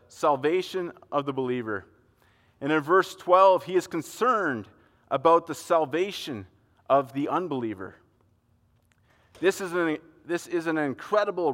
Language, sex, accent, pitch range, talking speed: English, male, American, 110-175 Hz, 115 wpm